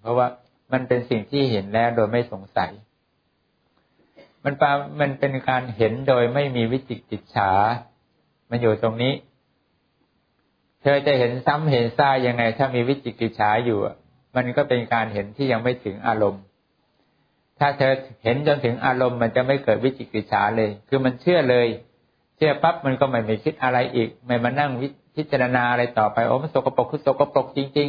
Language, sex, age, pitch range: English, male, 60-79, 115-135 Hz